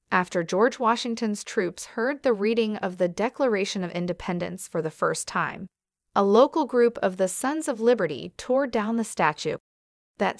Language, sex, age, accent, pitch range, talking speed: English, female, 30-49, American, 185-250 Hz, 165 wpm